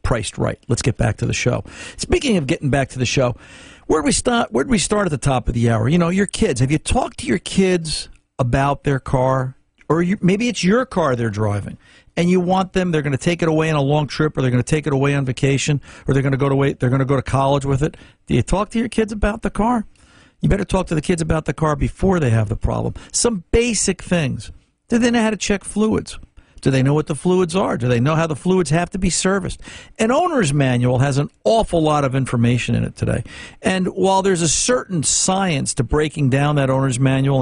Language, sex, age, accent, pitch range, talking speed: English, male, 50-69, American, 125-185 Hz, 255 wpm